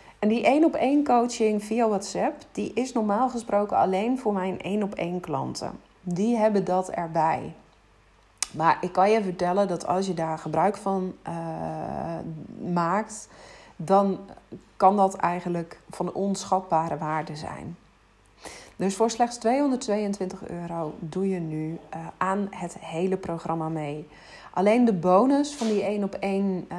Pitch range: 170-205 Hz